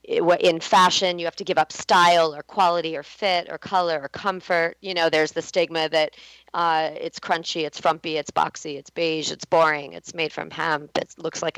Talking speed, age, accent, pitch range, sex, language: 205 wpm, 40-59, American, 160-190 Hz, female, English